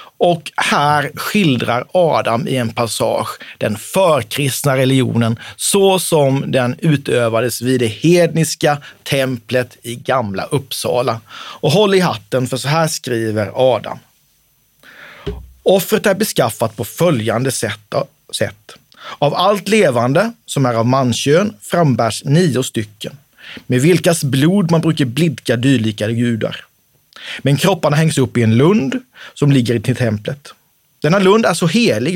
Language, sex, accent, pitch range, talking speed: Swedish, male, native, 125-170 Hz, 130 wpm